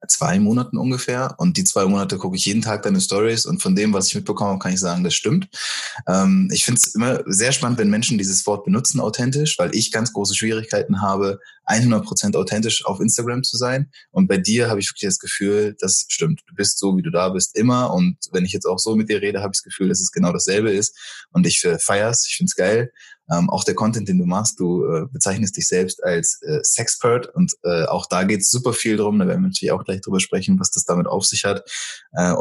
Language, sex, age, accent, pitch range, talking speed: German, male, 20-39, German, 100-140 Hz, 245 wpm